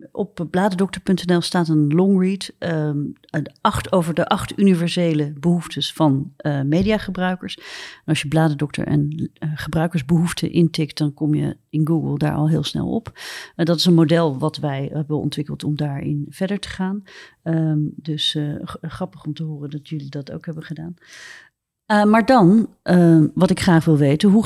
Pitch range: 150-185 Hz